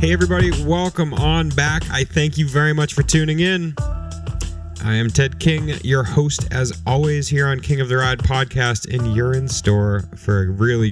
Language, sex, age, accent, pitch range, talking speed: English, male, 30-49, American, 110-145 Hz, 190 wpm